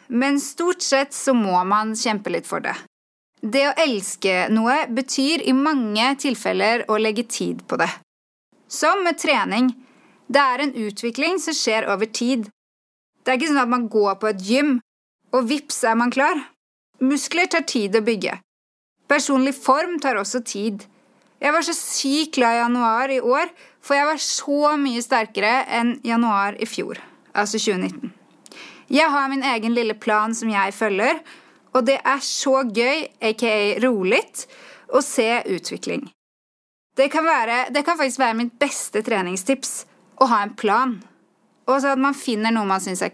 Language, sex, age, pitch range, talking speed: Swedish, female, 30-49, 225-285 Hz, 170 wpm